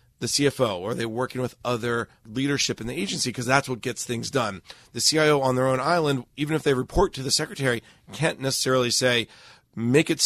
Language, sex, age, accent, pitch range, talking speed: English, male, 40-59, American, 120-145 Hz, 210 wpm